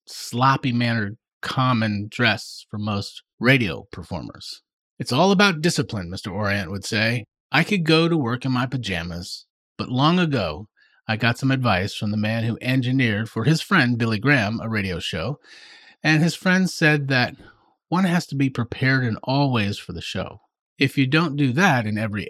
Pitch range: 110-145 Hz